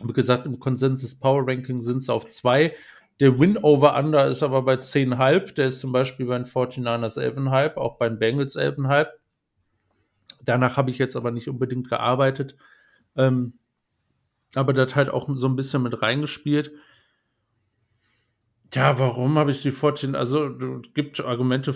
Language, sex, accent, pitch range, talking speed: German, male, German, 115-130 Hz, 155 wpm